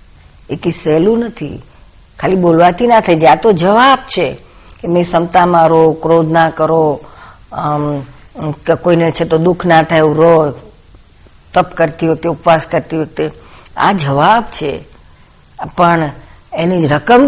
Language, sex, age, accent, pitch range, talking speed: Gujarati, female, 50-69, native, 150-185 Hz, 75 wpm